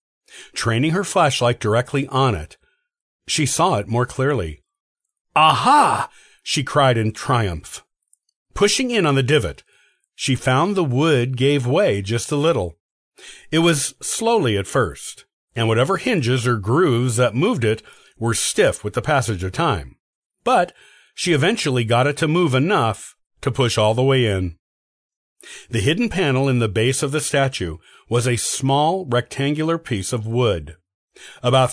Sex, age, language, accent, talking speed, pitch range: male, 50-69, English, American, 155 wpm, 115-150 Hz